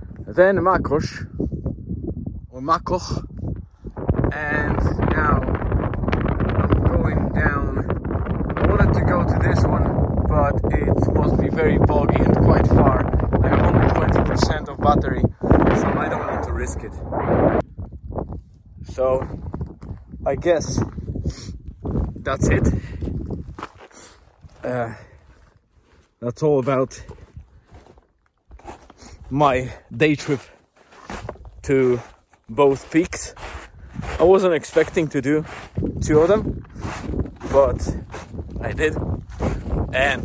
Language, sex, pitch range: English, male, 90-135 Hz